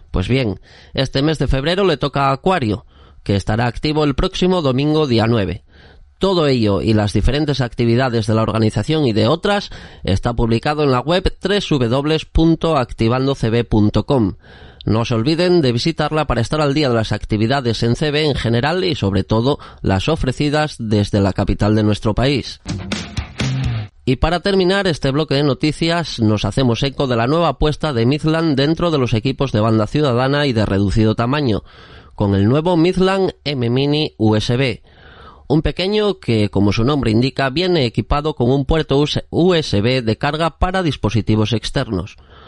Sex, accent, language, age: male, Spanish, Spanish, 30-49